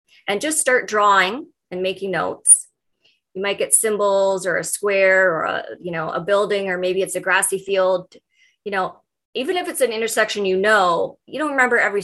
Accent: American